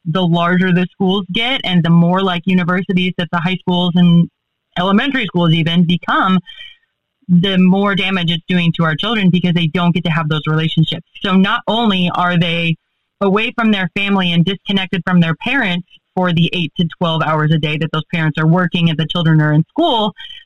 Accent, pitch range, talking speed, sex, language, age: American, 170-200 Hz, 200 wpm, female, English, 30-49